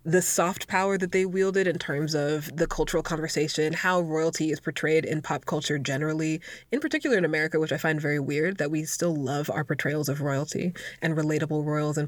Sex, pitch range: female, 155-180 Hz